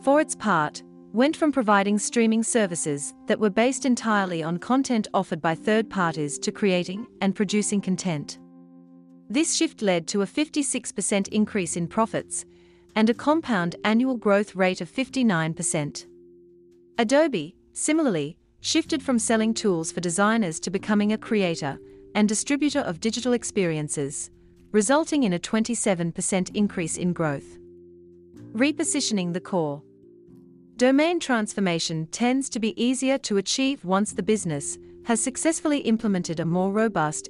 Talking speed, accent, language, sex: 135 wpm, Australian, English, female